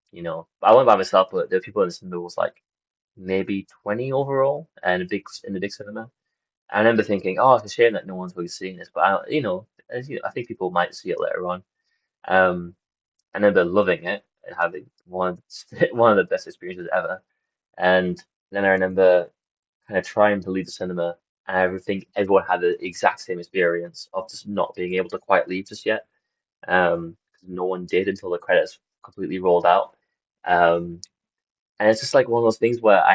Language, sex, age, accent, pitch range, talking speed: English, male, 20-39, British, 90-110 Hz, 220 wpm